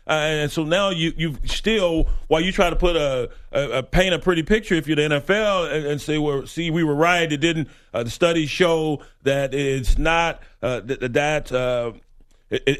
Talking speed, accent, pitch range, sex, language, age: 210 wpm, American, 130-170 Hz, male, English, 40-59